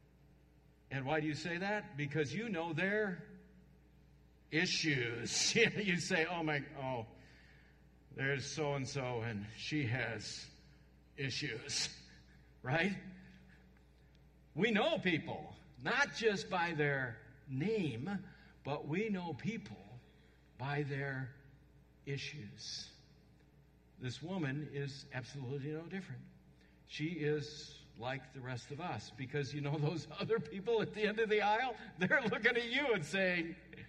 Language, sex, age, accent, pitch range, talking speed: English, male, 60-79, American, 125-160 Hz, 120 wpm